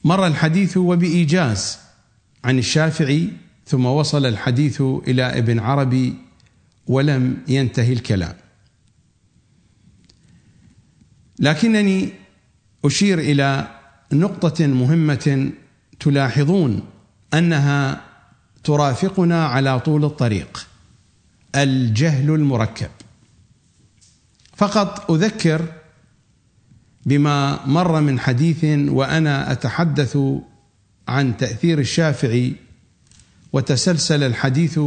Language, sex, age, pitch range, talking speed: English, male, 50-69, 125-155 Hz, 70 wpm